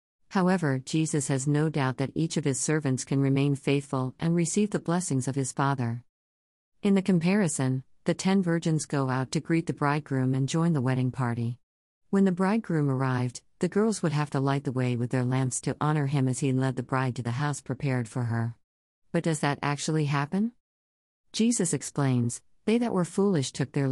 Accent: American